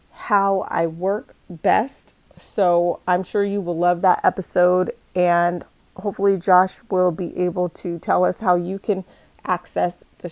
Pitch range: 175-195 Hz